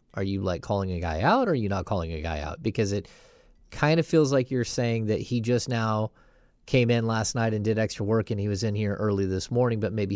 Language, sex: English, male